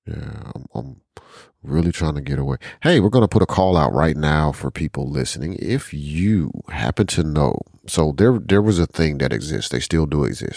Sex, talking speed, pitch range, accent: male, 205 wpm, 75-90 Hz, American